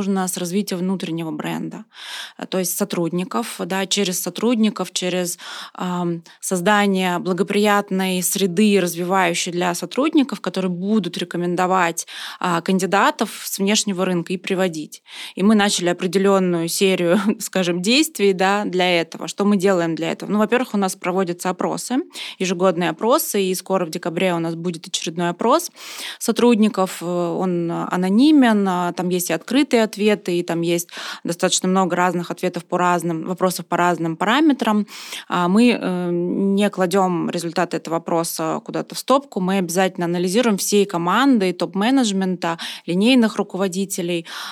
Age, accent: 20-39, native